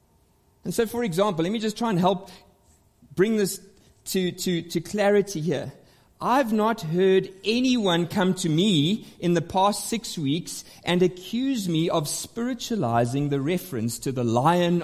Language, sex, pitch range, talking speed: English, male, 160-220 Hz, 160 wpm